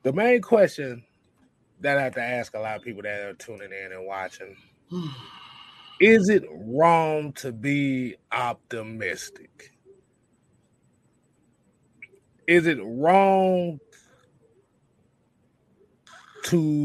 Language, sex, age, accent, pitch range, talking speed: English, male, 30-49, American, 115-150 Hz, 100 wpm